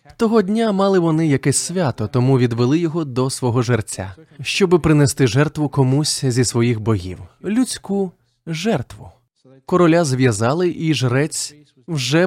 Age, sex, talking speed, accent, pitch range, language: 20-39, male, 125 wpm, native, 125-170 Hz, Ukrainian